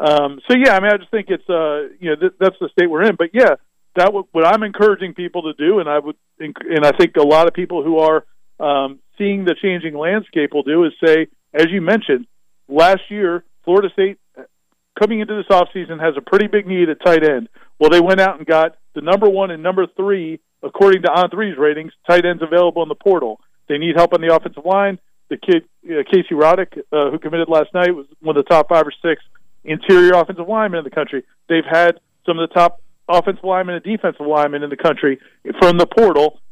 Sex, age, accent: male, 50-69, American